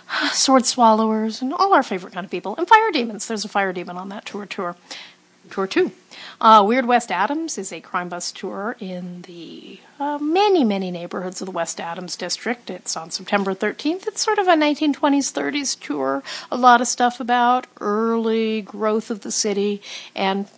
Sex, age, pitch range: female, 40-59, 190-250 Hz